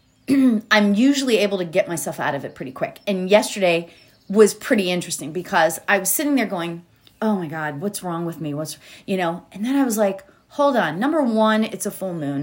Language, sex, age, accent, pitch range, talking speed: English, female, 30-49, American, 200-280 Hz, 215 wpm